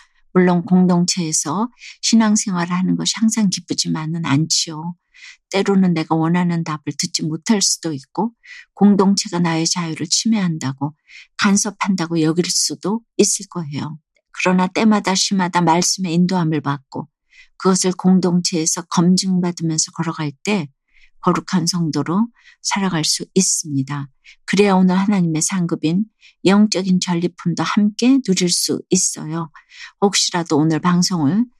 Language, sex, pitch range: Korean, female, 160-195 Hz